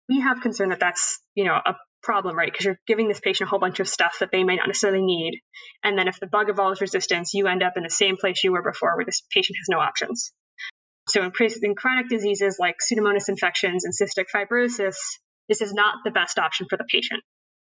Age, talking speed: 20-39, 230 wpm